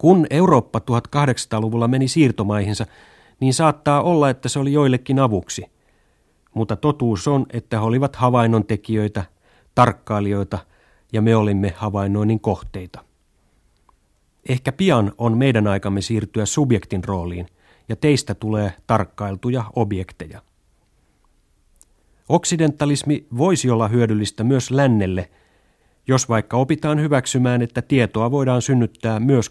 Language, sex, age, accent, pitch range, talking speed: Finnish, male, 30-49, native, 100-125 Hz, 110 wpm